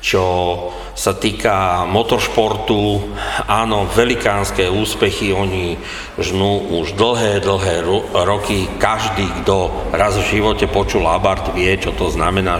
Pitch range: 95-110 Hz